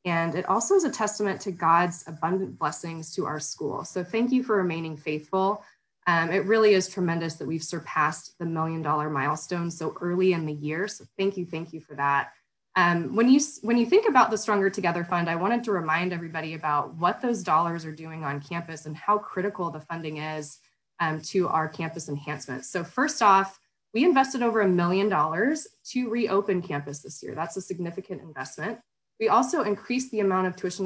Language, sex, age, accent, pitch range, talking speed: English, female, 20-39, American, 160-200 Hz, 200 wpm